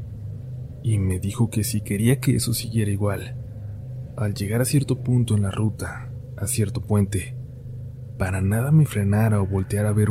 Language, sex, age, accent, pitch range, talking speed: Spanish, male, 30-49, Mexican, 105-125 Hz, 170 wpm